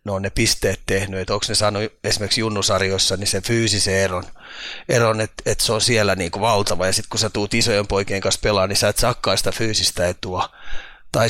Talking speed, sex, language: 220 wpm, male, Finnish